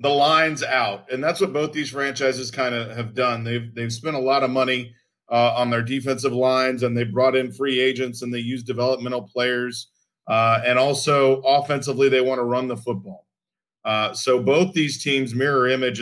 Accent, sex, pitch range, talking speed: American, male, 125-155 Hz, 200 wpm